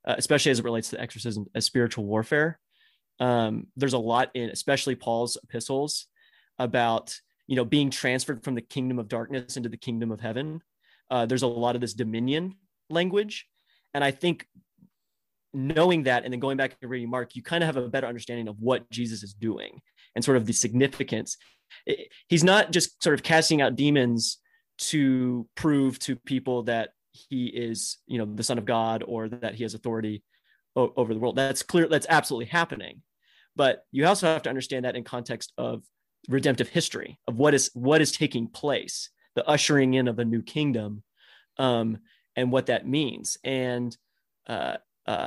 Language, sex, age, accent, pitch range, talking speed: English, male, 30-49, American, 120-140 Hz, 180 wpm